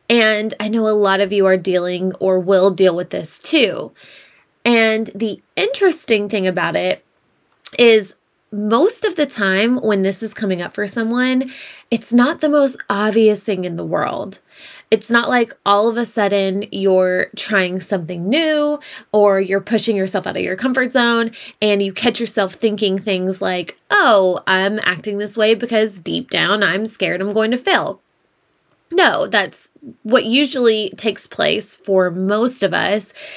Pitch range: 195-230 Hz